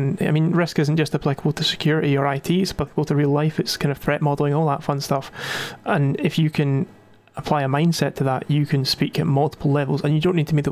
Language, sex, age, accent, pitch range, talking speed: English, male, 30-49, British, 140-160 Hz, 260 wpm